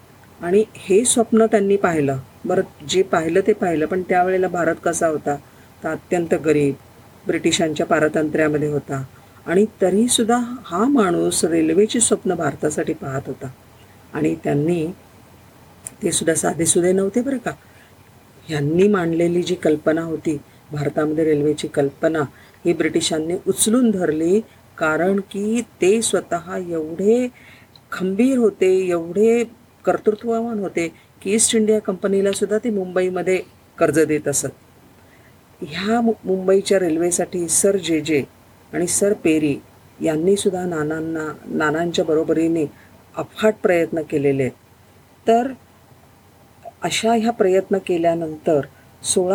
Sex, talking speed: female, 95 wpm